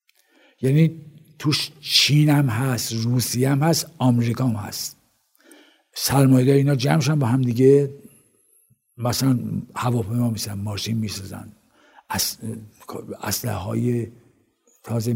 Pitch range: 125-170 Hz